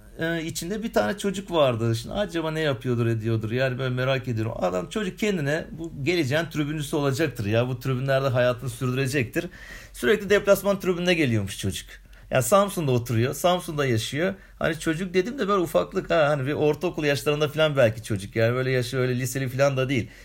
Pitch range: 115-160 Hz